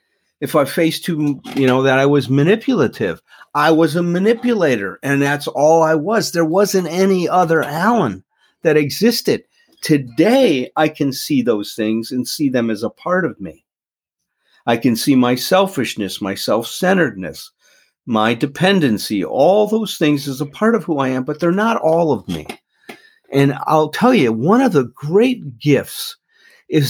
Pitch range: 145-210 Hz